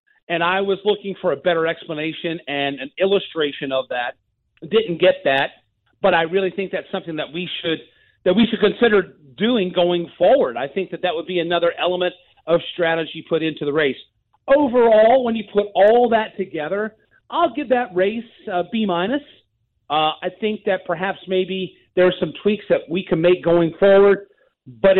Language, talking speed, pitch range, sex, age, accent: English, 185 wpm, 160-205 Hz, male, 40-59, American